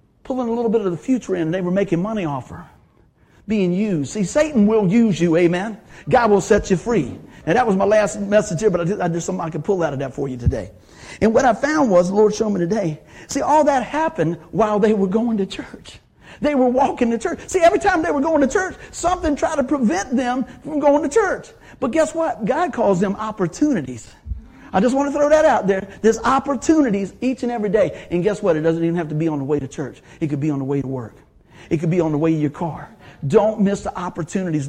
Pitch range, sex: 160-230 Hz, male